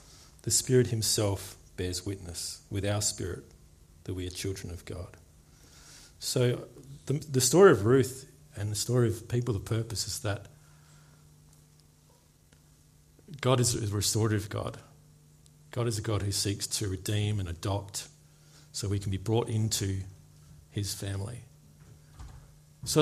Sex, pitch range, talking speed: male, 95-125 Hz, 140 wpm